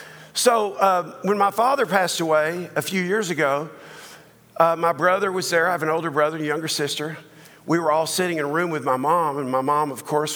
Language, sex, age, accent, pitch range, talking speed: English, male, 50-69, American, 150-195 Hz, 225 wpm